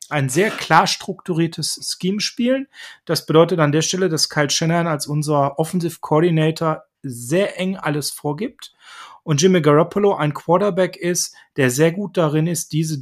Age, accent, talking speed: 30-49, German, 155 wpm